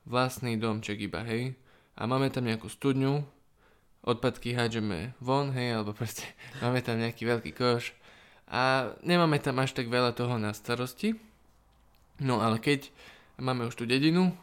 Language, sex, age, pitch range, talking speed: Slovak, male, 20-39, 115-135 Hz, 150 wpm